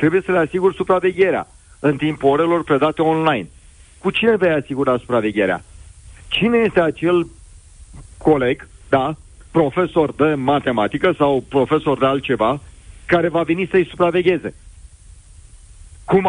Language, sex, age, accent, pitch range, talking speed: Romanian, male, 40-59, native, 135-180 Hz, 120 wpm